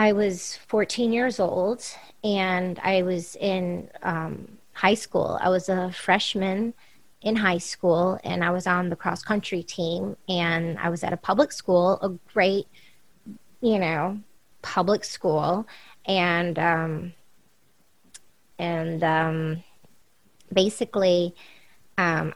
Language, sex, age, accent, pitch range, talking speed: English, female, 20-39, American, 175-195 Hz, 125 wpm